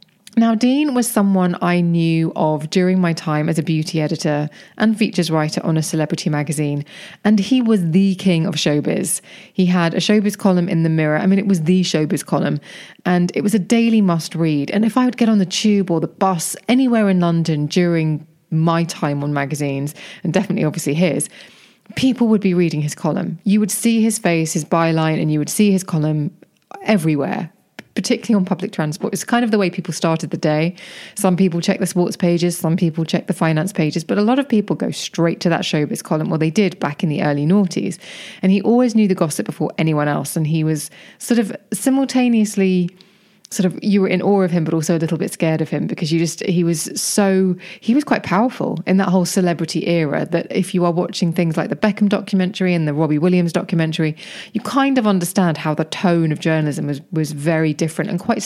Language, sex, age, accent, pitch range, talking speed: English, female, 30-49, British, 165-200 Hz, 215 wpm